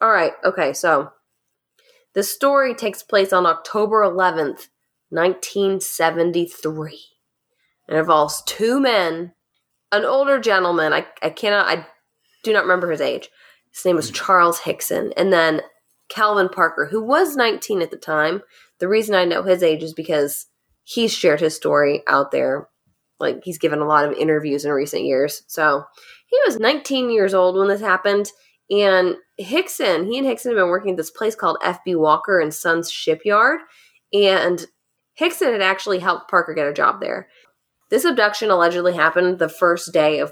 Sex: female